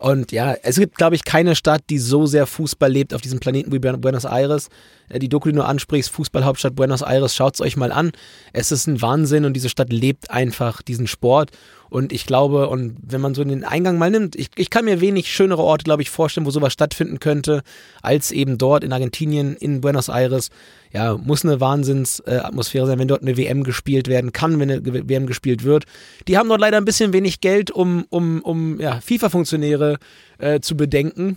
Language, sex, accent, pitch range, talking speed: German, male, German, 130-165 Hz, 210 wpm